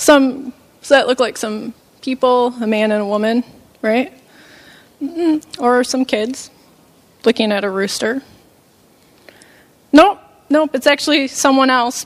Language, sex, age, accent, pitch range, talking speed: English, female, 20-39, American, 230-300 Hz, 140 wpm